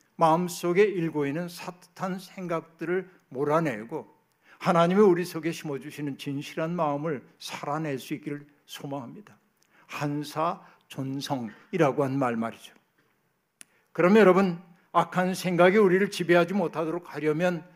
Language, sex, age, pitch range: Korean, male, 60-79, 150-185 Hz